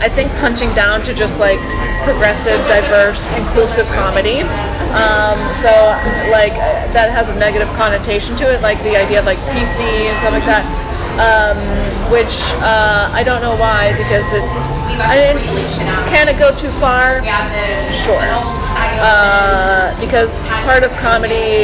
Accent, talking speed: American, 145 wpm